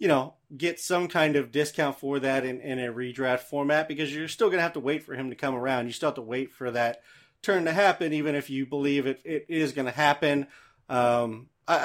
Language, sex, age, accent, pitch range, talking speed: English, male, 30-49, American, 130-165 Hz, 250 wpm